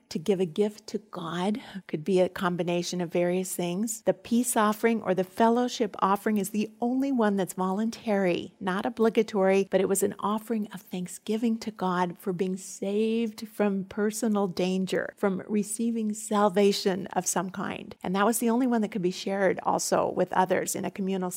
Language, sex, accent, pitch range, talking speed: English, female, American, 185-215 Hz, 185 wpm